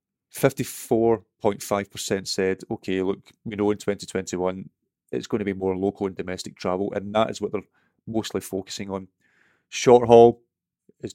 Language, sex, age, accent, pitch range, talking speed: English, male, 30-49, British, 95-115 Hz, 185 wpm